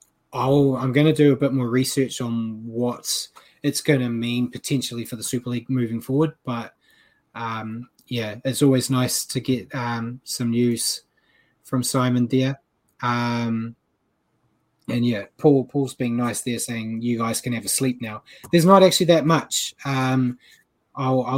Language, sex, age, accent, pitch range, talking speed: English, male, 20-39, Australian, 120-140 Hz, 165 wpm